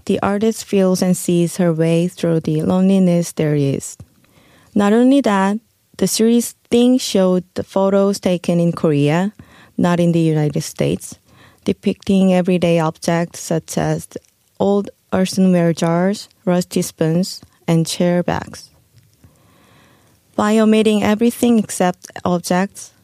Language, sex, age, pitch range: Korean, female, 20-39, 165-195 Hz